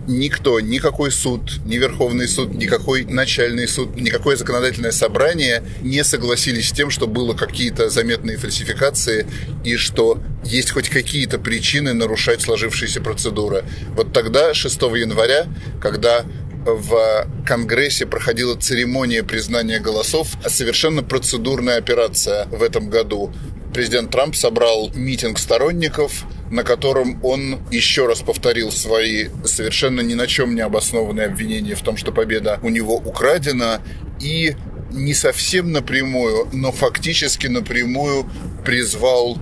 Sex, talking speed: male, 125 wpm